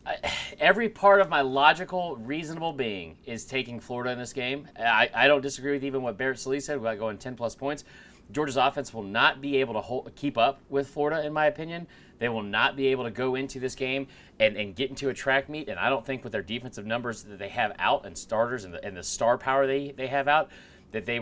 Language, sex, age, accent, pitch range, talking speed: English, male, 30-49, American, 125-175 Hz, 245 wpm